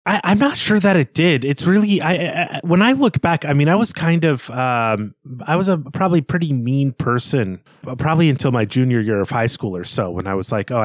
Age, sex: 30-49, male